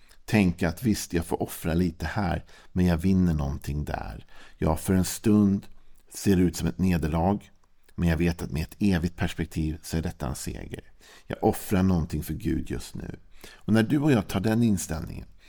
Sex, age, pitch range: male, 50-69, 80-100 Hz